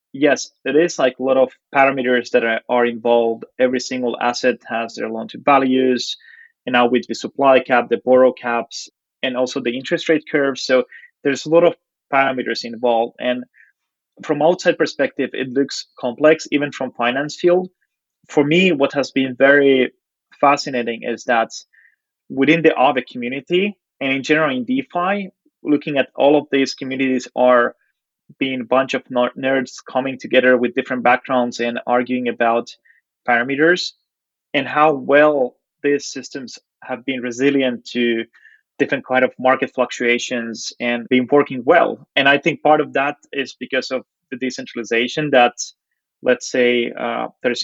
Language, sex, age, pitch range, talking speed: English, male, 20-39, 125-145 Hz, 160 wpm